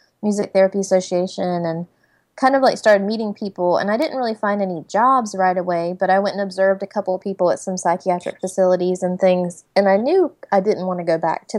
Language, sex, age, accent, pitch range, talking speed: English, female, 20-39, American, 170-200 Hz, 230 wpm